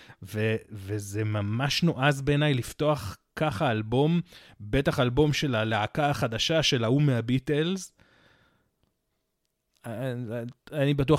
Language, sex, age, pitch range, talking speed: Hebrew, male, 30-49, 115-150 Hz, 95 wpm